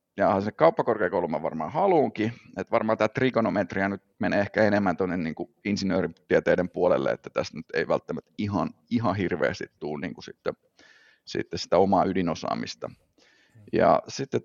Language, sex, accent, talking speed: Finnish, male, native, 145 wpm